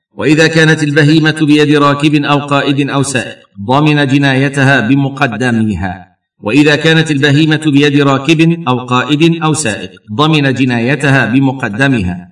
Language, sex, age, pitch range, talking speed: Arabic, male, 50-69, 115-150 Hz, 115 wpm